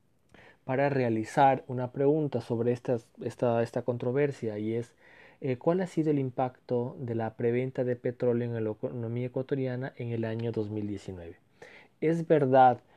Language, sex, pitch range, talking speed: Spanish, male, 115-130 Hz, 145 wpm